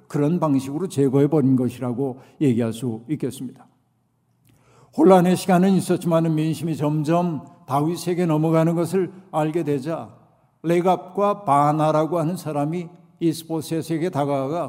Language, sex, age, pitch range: Korean, male, 60-79, 135-170 Hz